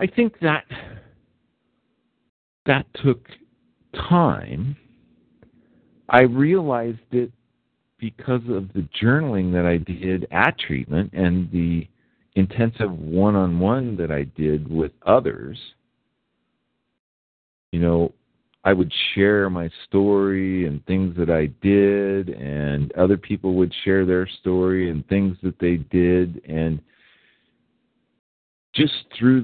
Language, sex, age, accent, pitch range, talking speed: English, male, 50-69, American, 85-120 Hz, 110 wpm